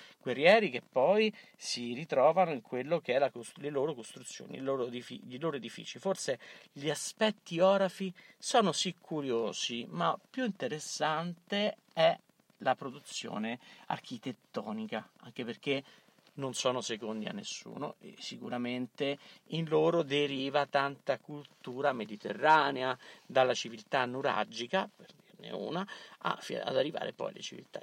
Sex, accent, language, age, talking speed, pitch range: male, native, Italian, 50-69, 125 wpm, 125-185 Hz